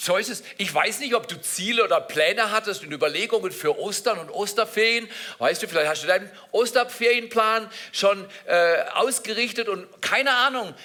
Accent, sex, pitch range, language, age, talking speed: German, male, 210-255 Hz, German, 50-69, 170 wpm